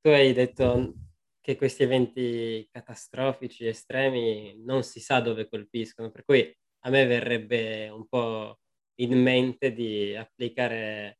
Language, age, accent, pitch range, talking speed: Italian, 20-39, native, 115-130 Hz, 130 wpm